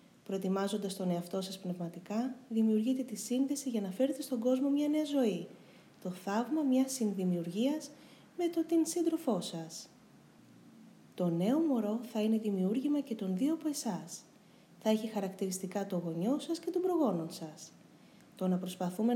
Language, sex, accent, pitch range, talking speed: Greek, female, native, 190-260 Hz, 155 wpm